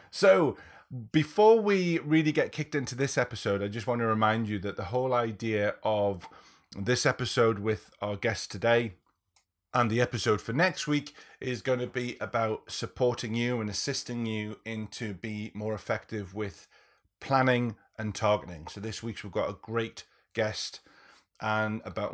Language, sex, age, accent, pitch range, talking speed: English, male, 30-49, British, 105-120 Hz, 165 wpm